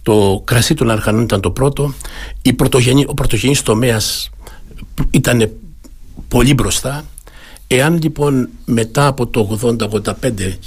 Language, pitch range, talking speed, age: Greek, 100-130 Hz, 105 wpm, 60-79